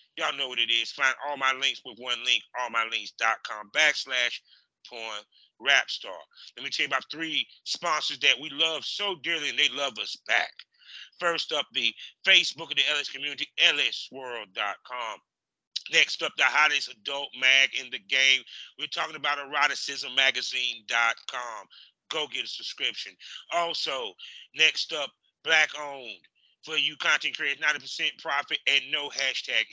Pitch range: 135-175 Hz